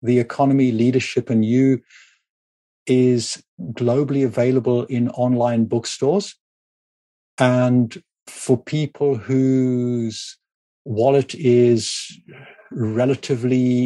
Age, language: 50-69, English